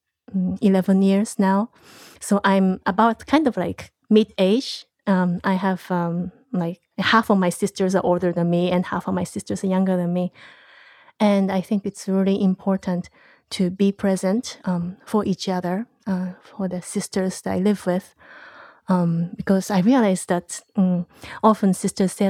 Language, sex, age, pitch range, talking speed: English, female, 30-49, 185-210 Hz, 165 wpm